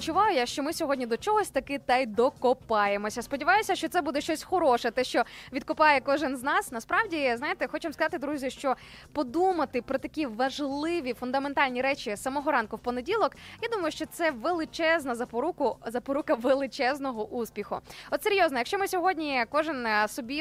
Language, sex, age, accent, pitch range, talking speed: Ukrainian, female, 20-39, native, 250-320 Hz, 160 wpm